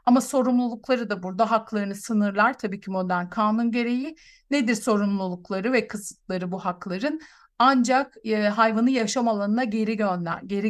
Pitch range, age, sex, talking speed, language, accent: 205-255 Hz, 50-69, female, 135 wpm, Turkish, native